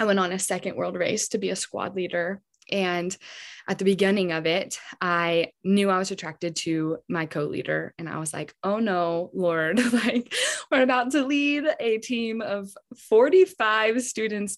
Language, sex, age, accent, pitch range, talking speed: English, female, 20-39, American, 180-255 Hz, 180 wpm